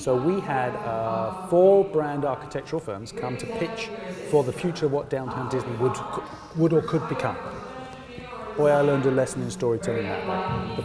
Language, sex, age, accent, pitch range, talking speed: English, male, 40-59, British, 140-185 Hz, 185 wpm